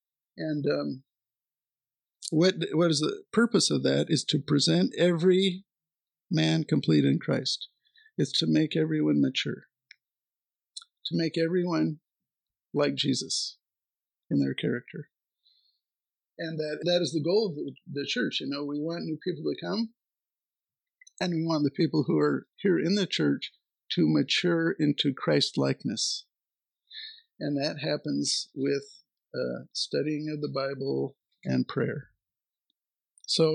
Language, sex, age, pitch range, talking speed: English, male, 50-69, 145-175 Hz, 135 wpm